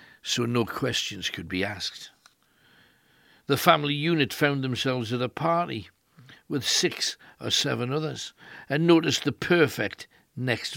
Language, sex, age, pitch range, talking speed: English, male, 60-79, 110-145 Hz, 135 wpm